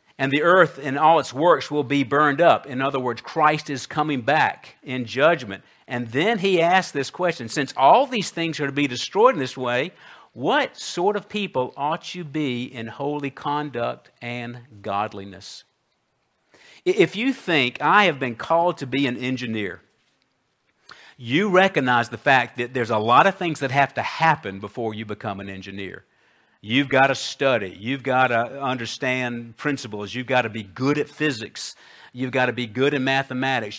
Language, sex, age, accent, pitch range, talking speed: English, male, 50-69, American, 120-145 Hz, 180 wpm